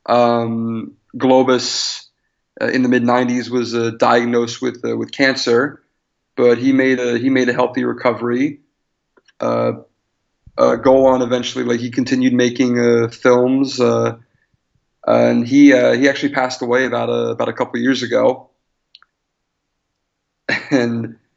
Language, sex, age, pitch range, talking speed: English, male, 30-49, 120-145 Hz, 145 wpm